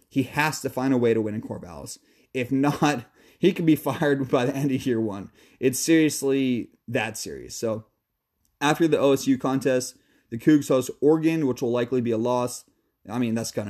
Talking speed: 195 wpm